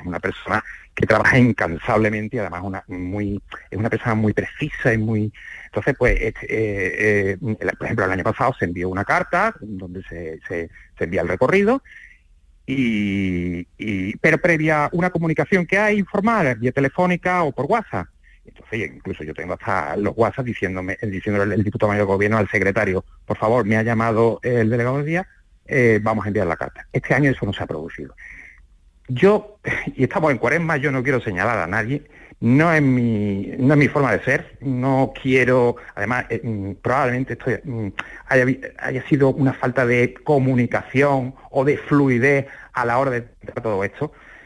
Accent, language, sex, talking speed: Spanish, Spanish, male, 180 wpm